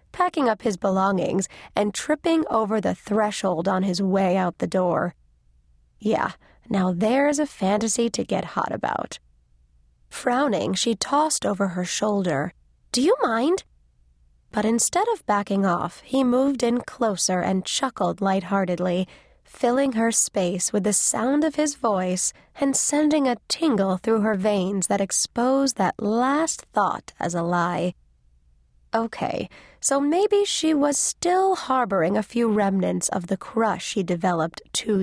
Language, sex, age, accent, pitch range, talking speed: English, female, 20-39, American, 185-245 Hz, 145 wpm